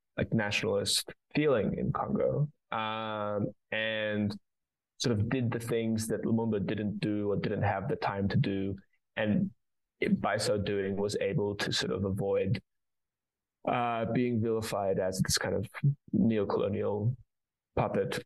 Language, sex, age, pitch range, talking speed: English, male, 20-39, 100-115 Hz, 140 wpm